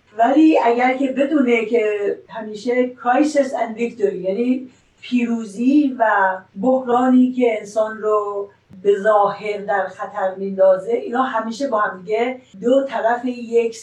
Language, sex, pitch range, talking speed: Persian, female, 210-255 Hz, 115 wpm